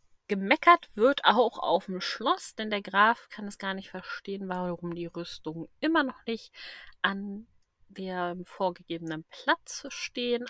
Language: German